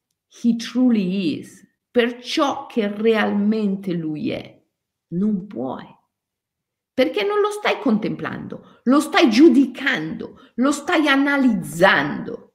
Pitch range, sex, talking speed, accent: 190-275 Hz, female, 105 wpm, native